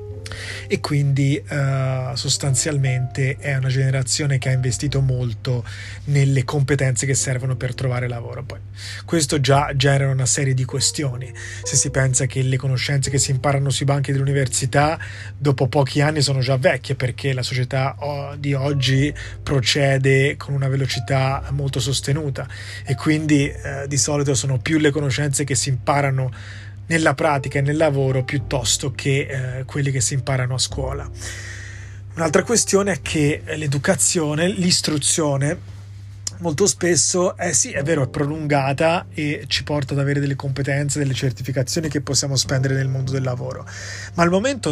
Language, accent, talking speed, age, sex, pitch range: Italian, native, 150 wpm, 20-39, male, 125-145 Hz